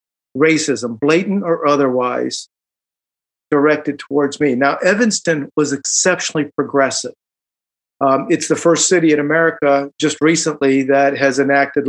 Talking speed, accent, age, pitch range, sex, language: 120 wpm, American, 50-69, 140-185 Hz, male, English